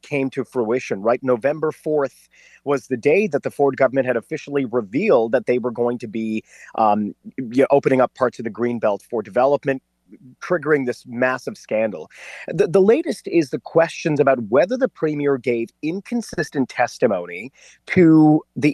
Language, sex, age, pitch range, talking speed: English, male, 30-49, 120-155 Hz, 170 wpm